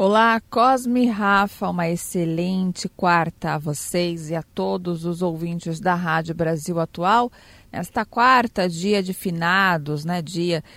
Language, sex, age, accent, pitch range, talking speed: Portuguese, female, 40-59, Brazilian, 165-195 Hz, 140 wpm